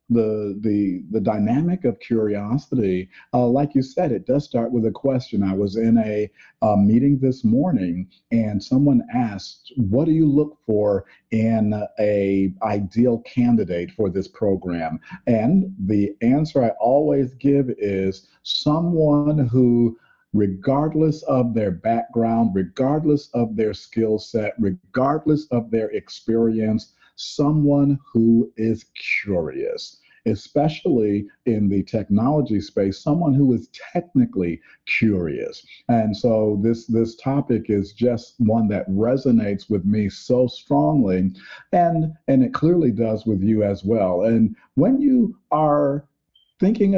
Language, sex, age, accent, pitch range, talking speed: English, male, 50-69, American, 105-140 Hz, 130 wpm